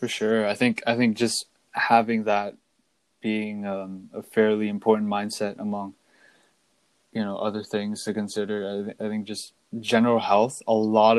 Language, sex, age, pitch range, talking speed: English, male, 20-39, 105-115 Hz, 160 wpm